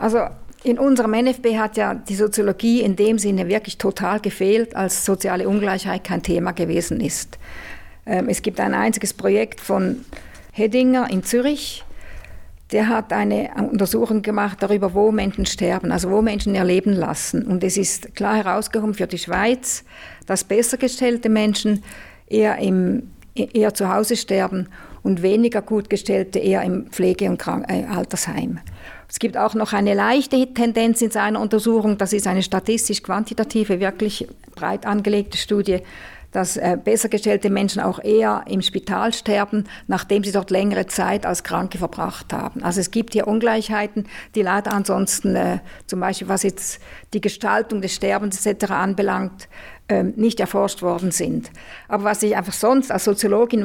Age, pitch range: 50-69, 195-225 Hz